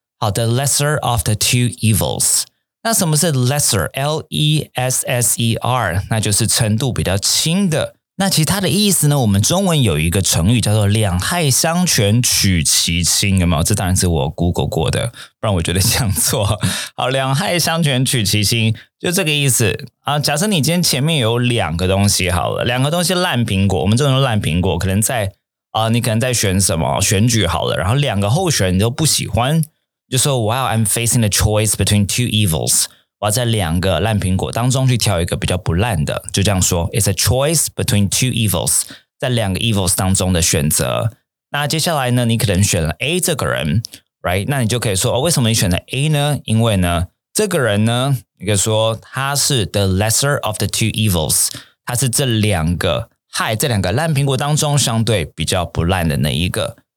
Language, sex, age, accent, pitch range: Chinese, male, 20-39, native, 100-135 Hz